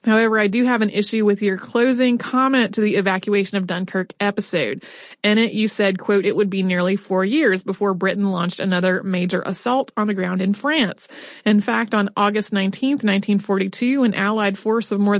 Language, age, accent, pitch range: English, 30-49, American, 195-230 Hz